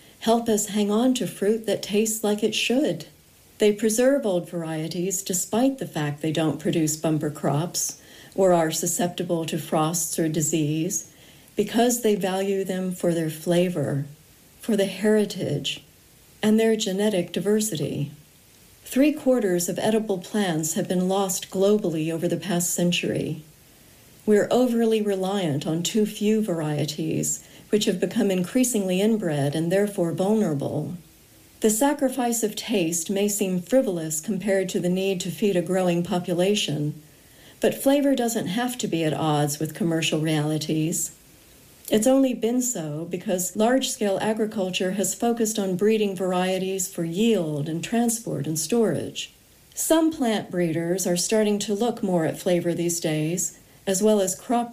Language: English